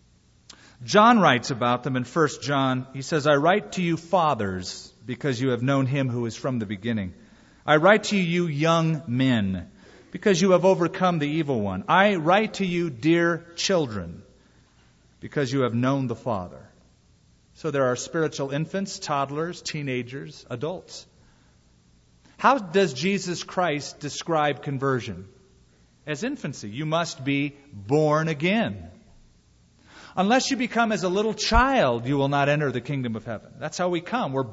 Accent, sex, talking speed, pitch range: American, male, 160 wpm, 120-180 Hz